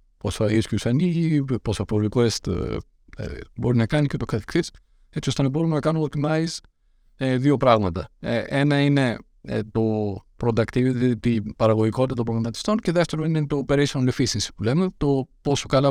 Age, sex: 50-69, male